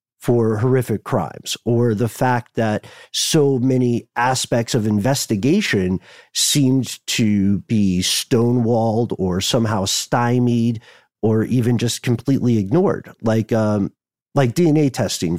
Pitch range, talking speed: 100-120 Hz, 115 wpm